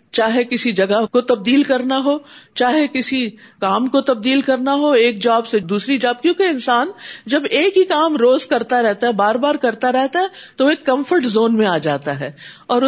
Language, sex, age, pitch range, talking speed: Urdu, female, 50-69, 200-275 Hz, 200 wpm